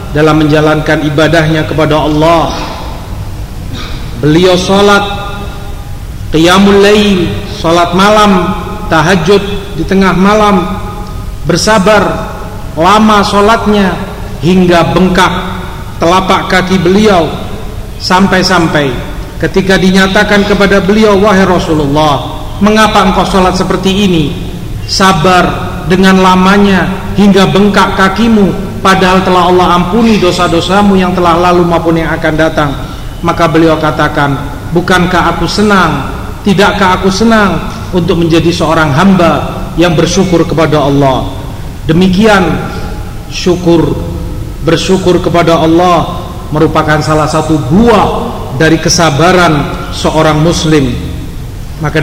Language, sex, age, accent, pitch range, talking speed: English, male, 40-59, Indonesian, 155-190 Hz, 95 wpm